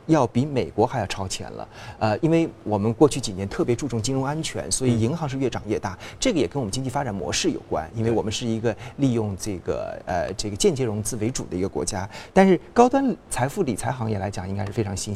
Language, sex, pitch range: Chinese, male, 105-145 Hz